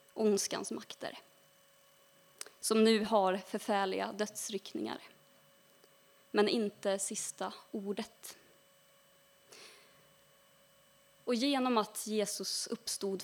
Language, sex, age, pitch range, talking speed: Swedish, female, 20-39, 195-240 Hz, 75 wpm